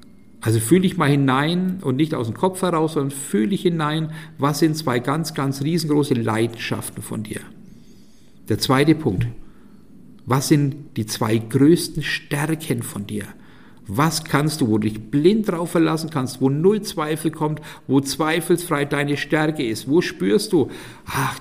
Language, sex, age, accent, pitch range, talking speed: German, male, 50-69, German, 125-160 Hz, 165 wpm